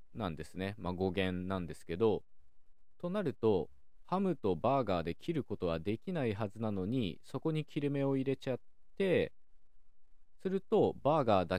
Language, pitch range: Japanese, 85-125 Hz